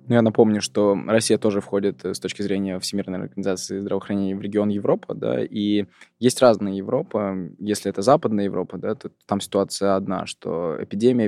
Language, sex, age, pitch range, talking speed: Russian, male, 20-39, 100-115 Hz, 170 wpm